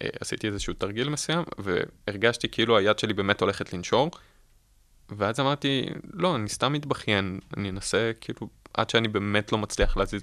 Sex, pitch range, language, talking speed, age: male, 95-115 Hz, Hebrew, 155 wpm, 20-39